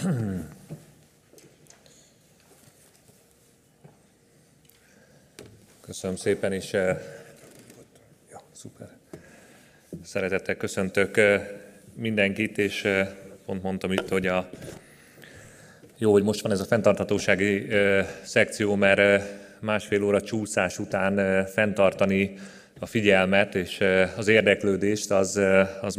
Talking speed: 70 wpm